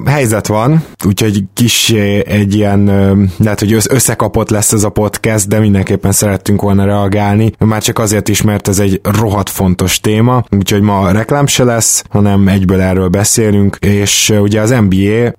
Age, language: 20-39, Hungarian